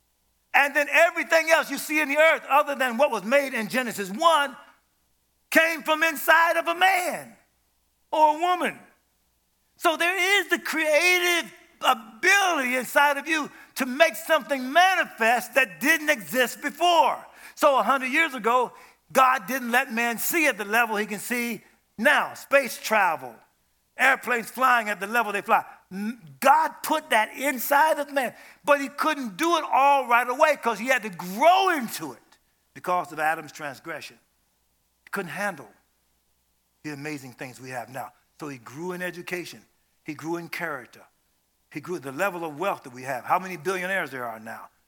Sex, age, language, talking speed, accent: male, 50-69, English, 170 wpm, American